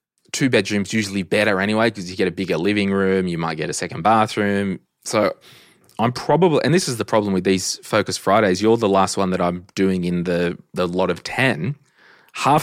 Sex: male